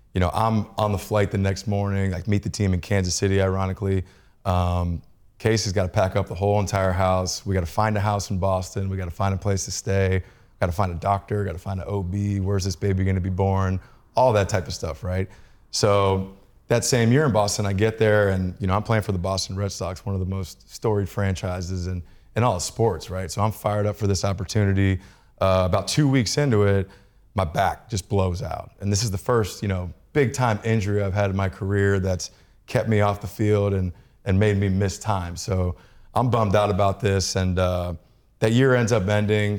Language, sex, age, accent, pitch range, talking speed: English, male, 20-39, American, 95-105 Hz, 235 wpm